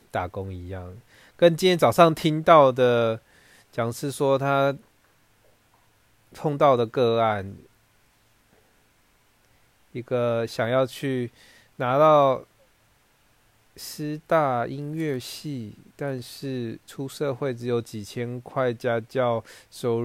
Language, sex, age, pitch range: Chinese, male, 20-39, 110-135 Hz